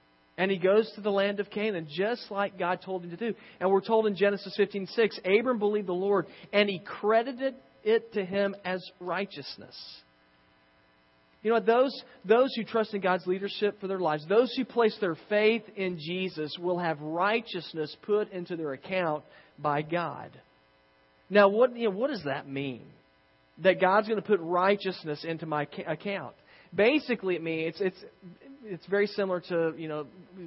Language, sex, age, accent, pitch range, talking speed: English, male, 40-59, American, 140-190 Hz, 170 wpm